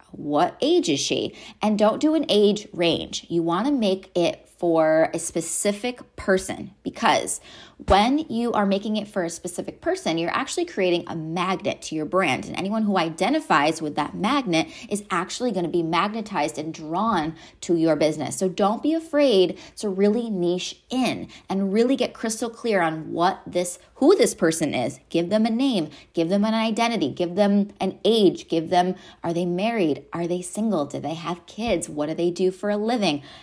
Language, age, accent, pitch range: English, 30-49, American, 175-220 Hz